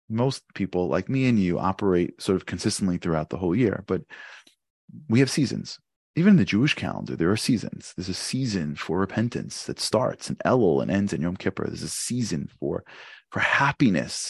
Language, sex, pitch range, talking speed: English, male, 90-125 Hz, 195 wpm